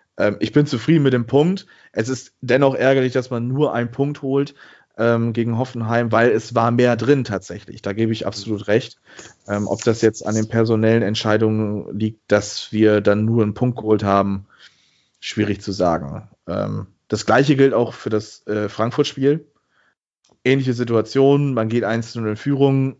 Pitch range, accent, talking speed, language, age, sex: 105-130 Hz, German, 170 wpm, German, 30-49, male